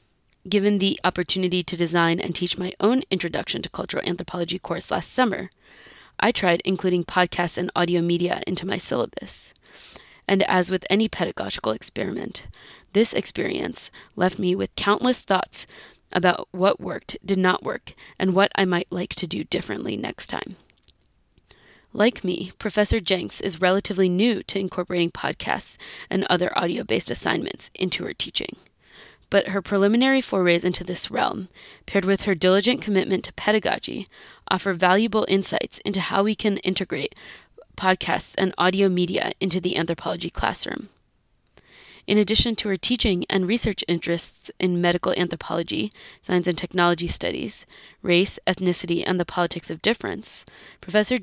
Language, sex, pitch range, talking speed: English, female, 180-200 Hz, 145 wpm